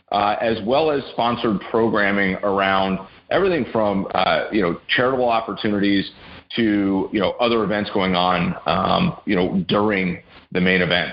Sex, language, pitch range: male, English, 95-120 Hz